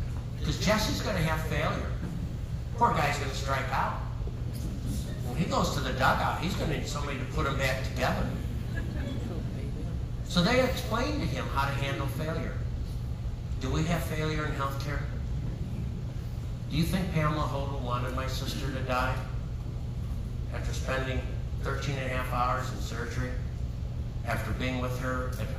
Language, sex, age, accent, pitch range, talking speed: English, male, 60-79, American, 110-125 Hz, 155 wpm